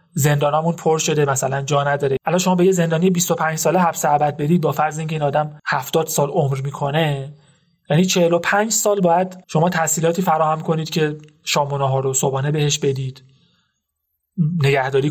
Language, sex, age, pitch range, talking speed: Persian, male, 30-49, 135-170 Hz, 160 wpm